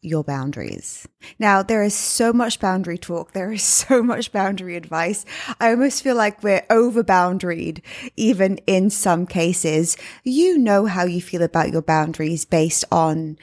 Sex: female